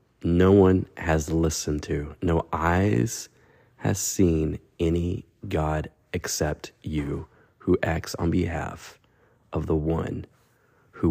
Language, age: English, 30-49